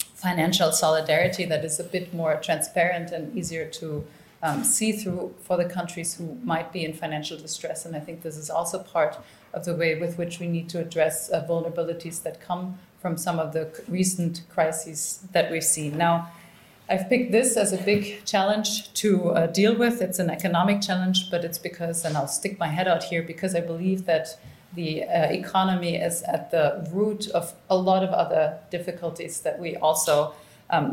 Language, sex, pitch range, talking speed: English, female, 160-185 Hz, 190 wpm